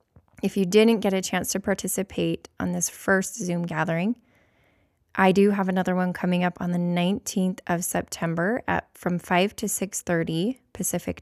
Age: 20-39